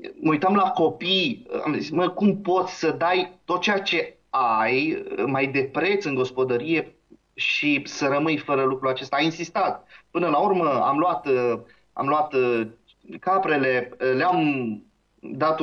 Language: Romanian